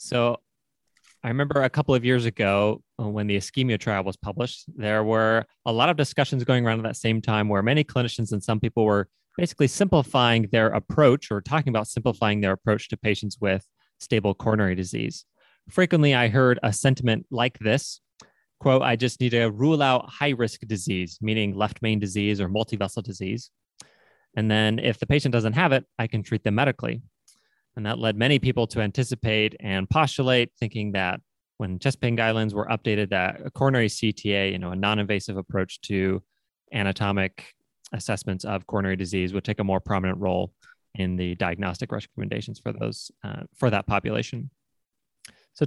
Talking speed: 175 wpm